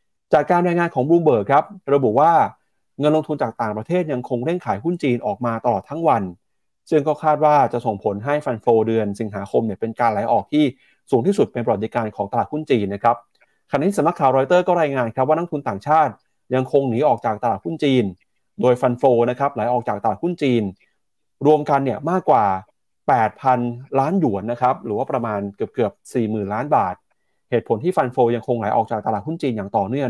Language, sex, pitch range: Thai, male, 120-155 Hz